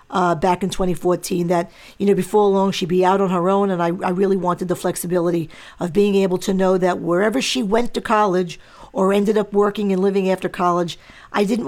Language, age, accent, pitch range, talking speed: English, 50-69, American, 175-210 Hz, 220 wpm